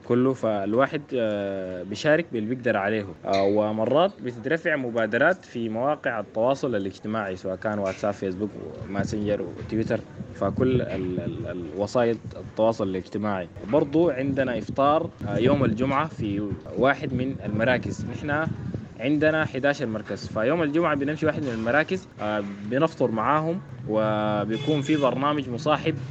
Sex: male